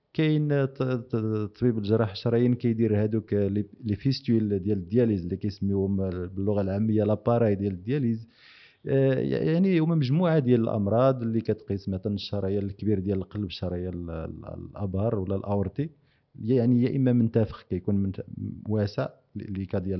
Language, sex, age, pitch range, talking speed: Arabic, male, 40-59, 100-125 Hz, 125 wpm